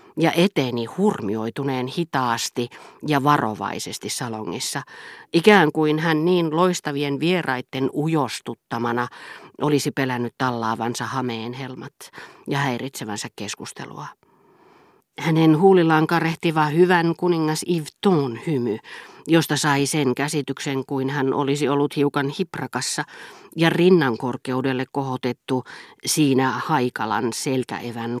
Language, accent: Finnish, native